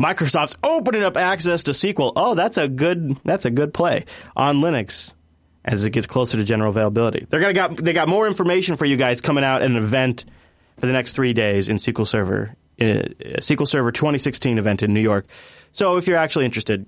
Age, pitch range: 30-49, 110-150 Hz